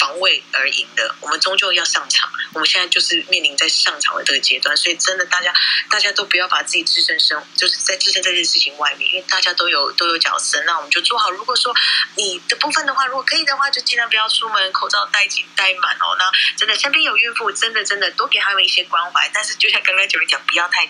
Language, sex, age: Chinese, female, 20-39